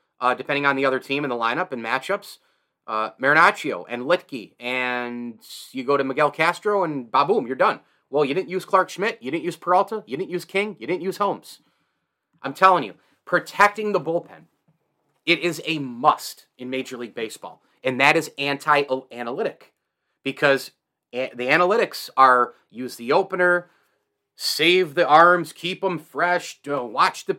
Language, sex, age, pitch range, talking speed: English, male, 30-49, 140-175 Hz, 165 wpm